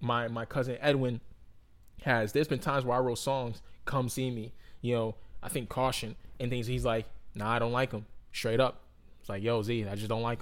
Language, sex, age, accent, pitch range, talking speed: English, male, 20-39, American, 110-130 Hz, 225 wpm